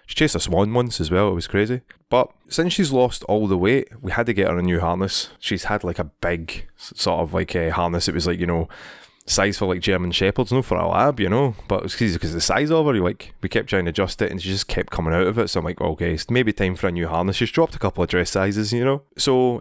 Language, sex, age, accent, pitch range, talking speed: English, male, 20-39, British, 90-110 Hz, 290 wpm